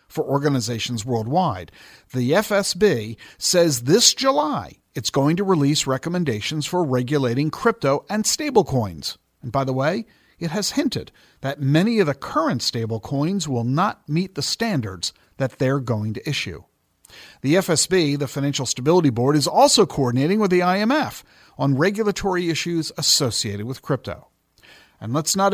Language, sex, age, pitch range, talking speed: English, male, 50-69, 140-205 Hz, 145 wpm